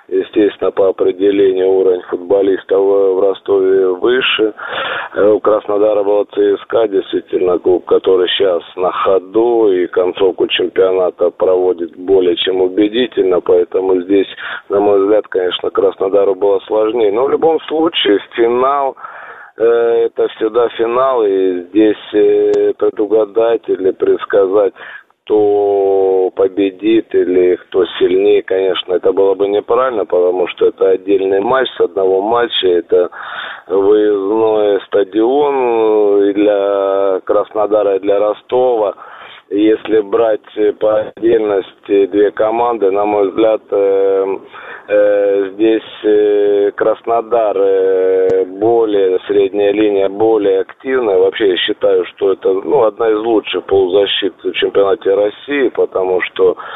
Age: 20-39